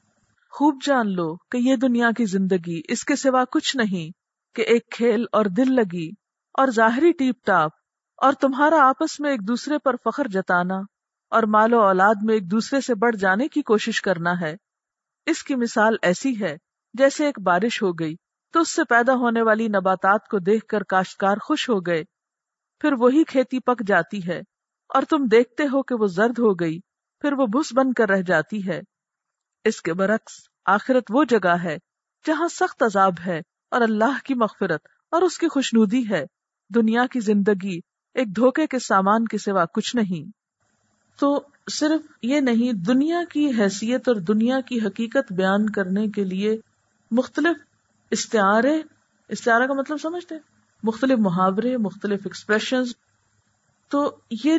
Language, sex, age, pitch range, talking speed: Urdu, female, 50-69, 200-270 Hz, 165 wpm